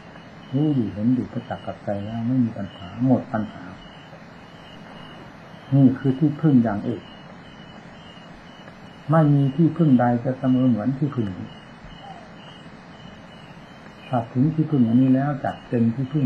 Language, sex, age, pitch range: Thai, male, 60-79, 115-130 Hz